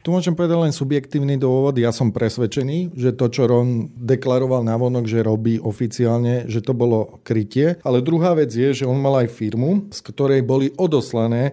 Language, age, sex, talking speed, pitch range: Slovak, 40-59, male, 185 wpm, 120-135 Hz